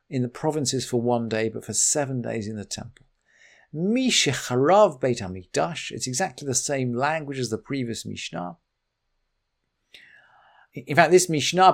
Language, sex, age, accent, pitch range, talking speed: English, male, 50-69, British, 115-145 Hz, 135 wpm